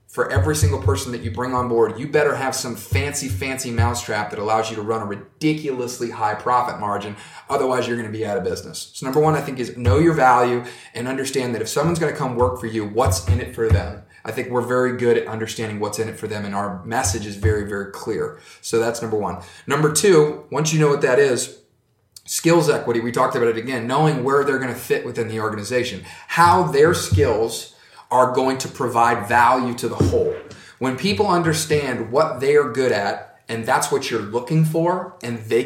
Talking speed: 225 wpm